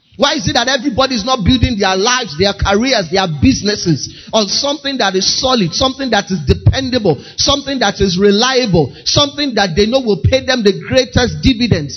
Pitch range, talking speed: 185-255 Hz, 185 wpm